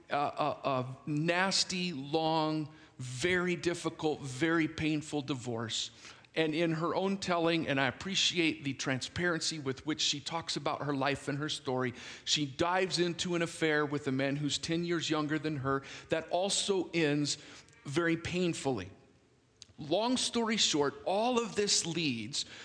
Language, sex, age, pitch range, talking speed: English, male, 50-69, 145-190 Hz, 150 wpm